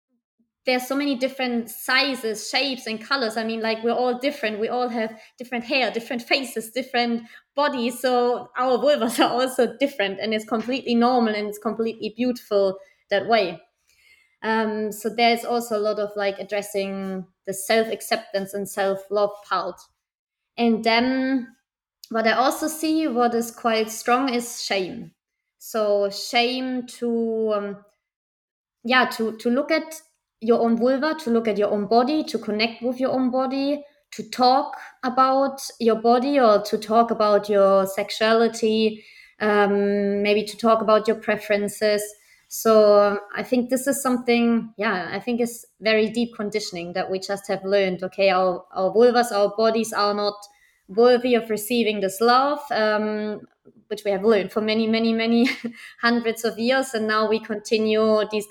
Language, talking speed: English, 160 wpm